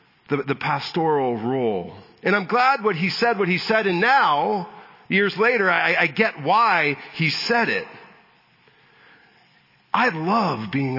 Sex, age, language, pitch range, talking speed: male, 40-59, English, 155-200 Hz, 145 wpm